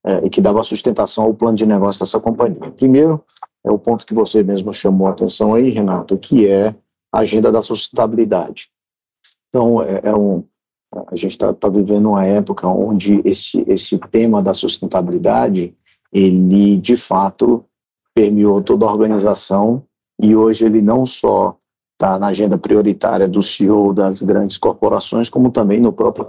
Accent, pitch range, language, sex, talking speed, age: Brazilian, 100-115 Hz, Portuguese, male, 160 wpm, 50-69